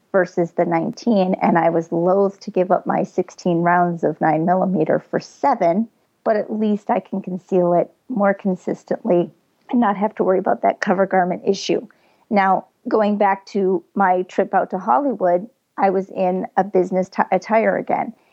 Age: 40-59